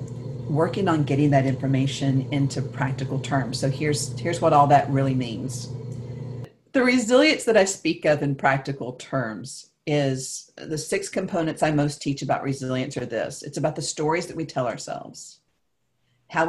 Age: 50-69